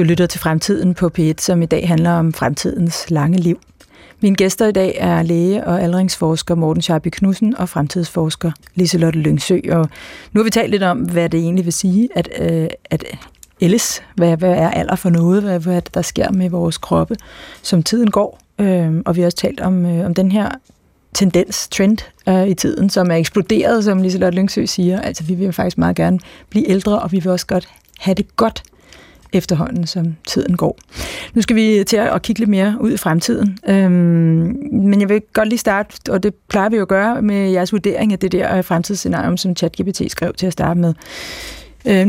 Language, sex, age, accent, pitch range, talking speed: Danish, female, 30-49, native, 170-205 Hz, 200 wpm